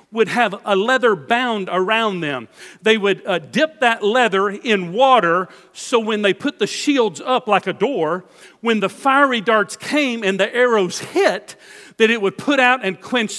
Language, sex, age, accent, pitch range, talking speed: English, male, 50-69, American, 195-255 Hz, 185 wpm